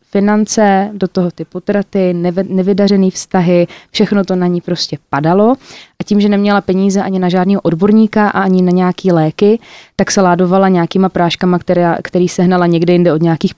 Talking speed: 170 wpm